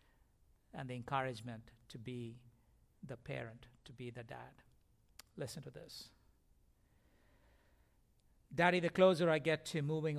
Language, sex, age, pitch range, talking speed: English, male, 60-79, 130-160 Hz, 125 wpm